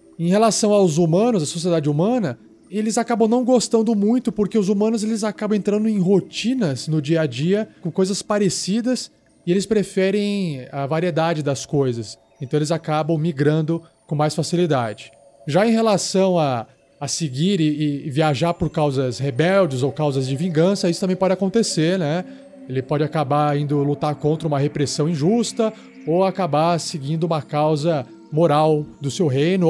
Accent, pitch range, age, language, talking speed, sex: Brazilian, 150-210 Hz, 20-39, Portuguese, 160 wpm, male